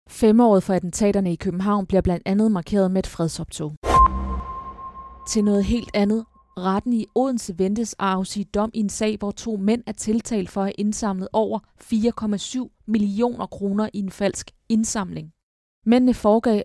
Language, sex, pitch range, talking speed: Danish, female, 185-220 Hz, 160 wpm